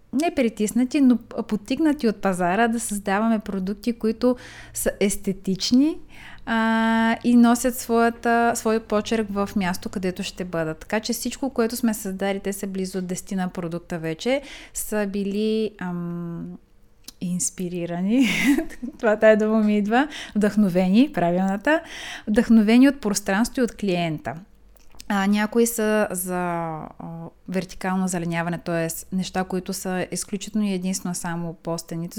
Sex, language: female, Bulgarian